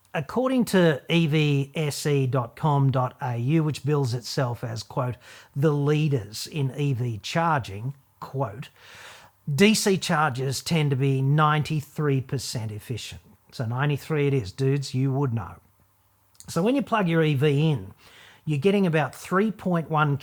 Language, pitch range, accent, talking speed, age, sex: English, 120-155 Hz, Australian, 120 wpm, 40-59, male